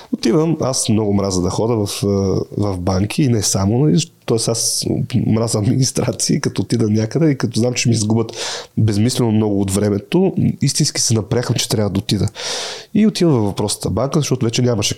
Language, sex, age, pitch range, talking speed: Bulgarian, male, 30-49, 110-145 Hz, 175 wpm